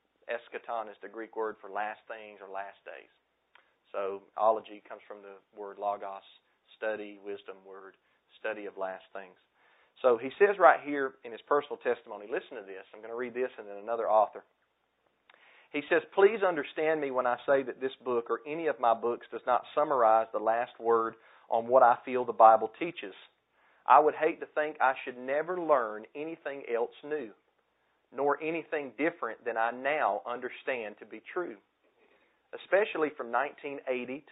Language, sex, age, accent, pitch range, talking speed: English, male, 40-59, American, 115-165 Hz, 175 wpm